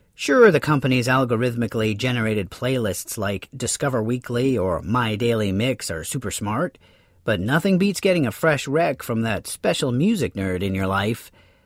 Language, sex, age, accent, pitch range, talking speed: English, male, 40-59, American, 120-180 Hz, 160 wpm